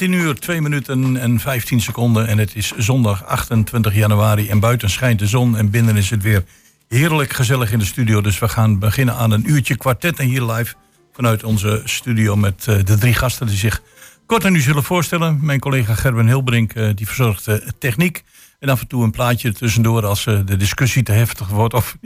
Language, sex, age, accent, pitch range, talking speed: Dutch, male, 50-69, Dutch, 105-130 Hz, 205 wpm